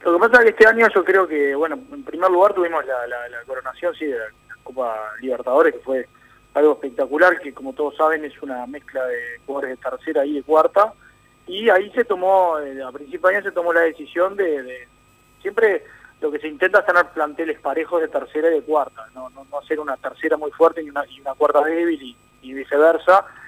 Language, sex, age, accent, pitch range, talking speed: Spanish, male, 20-39, Argentinian, 140-185 Hz, 225 wpm